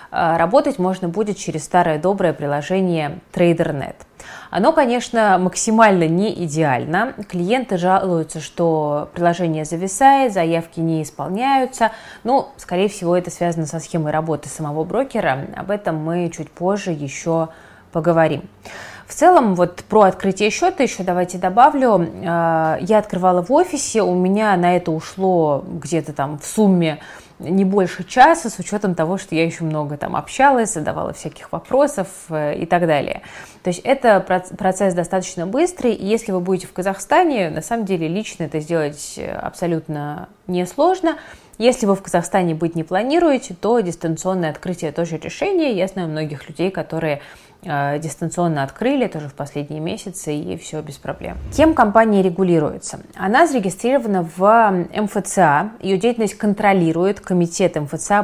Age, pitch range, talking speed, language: 20-39, 160-210 Hz, 140 wpm, Russian